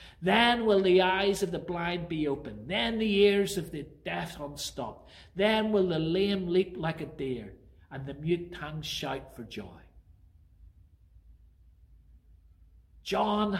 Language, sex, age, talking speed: English, male, 50-69, 140 wpm